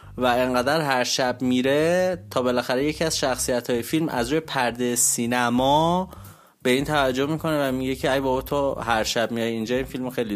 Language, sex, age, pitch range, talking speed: Persian, male, 30-49, 115-145 Hz, 190 wpm